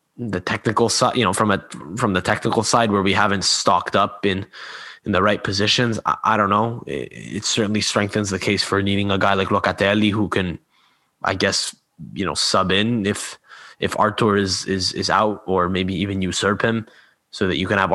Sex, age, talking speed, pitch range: male, 20-39, 205 wpm, 100-125 Hz